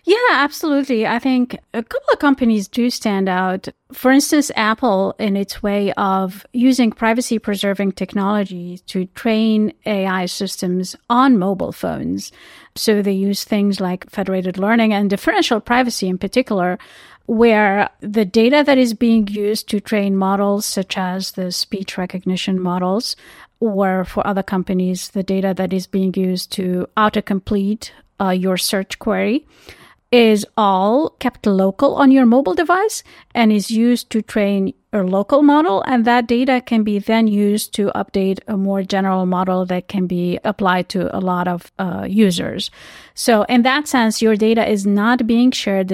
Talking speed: 160 wpm